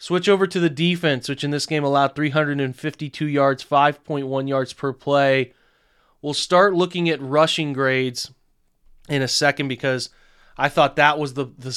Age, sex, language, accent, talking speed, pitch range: 30-49, male, English, American, 165 wpm, 130-155 Hz